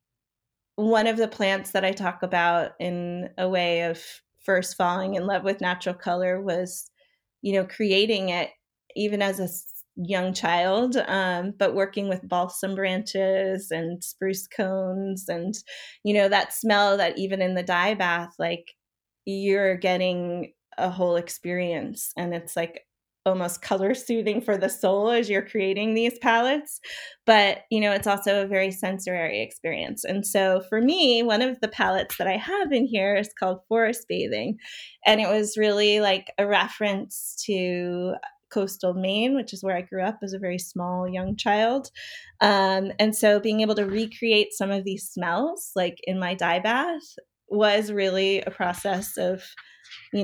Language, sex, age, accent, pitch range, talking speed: English, female, 20-39, American, 180-215 Hz, 165 wpm